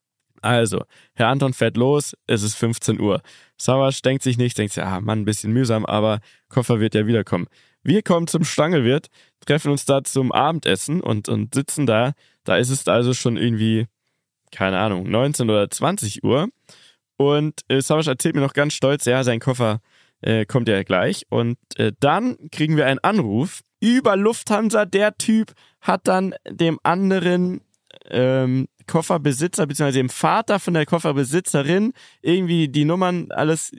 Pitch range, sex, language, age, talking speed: 115-160 Hz, male, German, 20-39, 165 wpm